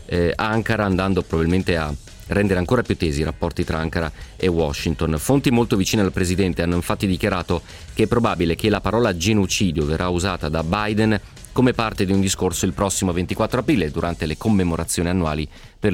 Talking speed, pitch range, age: 175 wpm, 85-105 Hz, 30-49